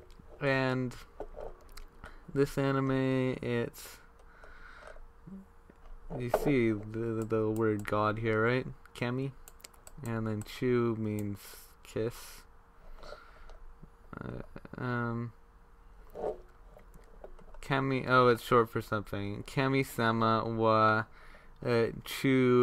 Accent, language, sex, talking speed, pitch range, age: American, English, male, 80 wpm, 100-125 Hz, 20-39